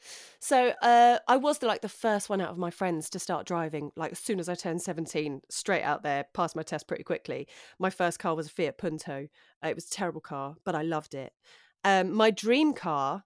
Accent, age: British, 30-49